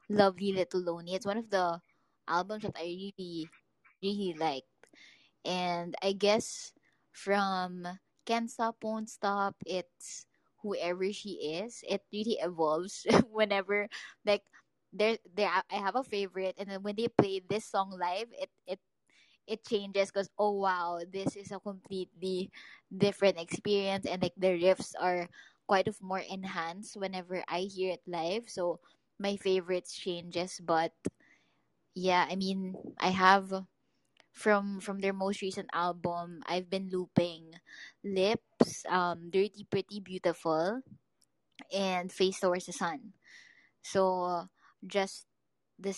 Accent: Filipino